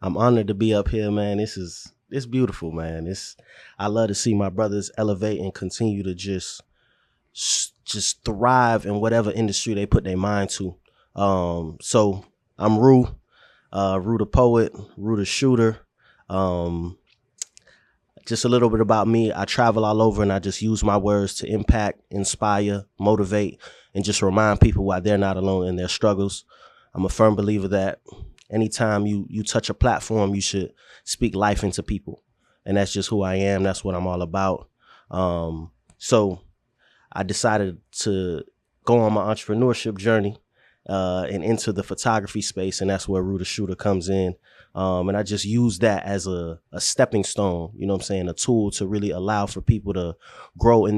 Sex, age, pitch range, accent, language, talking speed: male, 20-39, 95-110 Hz, American, English, 180 wpm